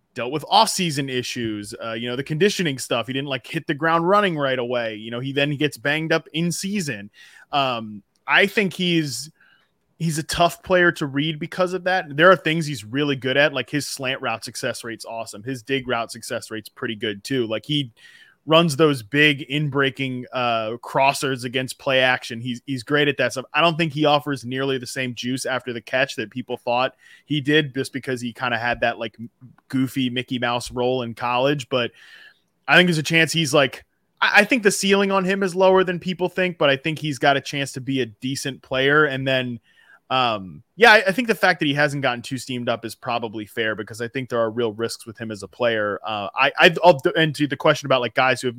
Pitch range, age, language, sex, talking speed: 120-155 Hz, 20-39, English, male, 230 wpm